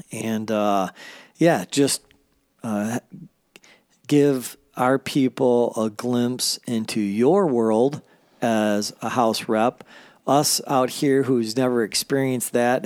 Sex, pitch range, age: male, 105-130 Hz, 40-59